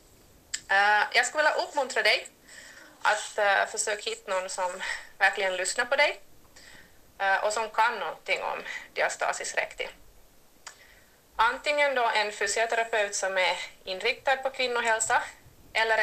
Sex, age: female, 30-49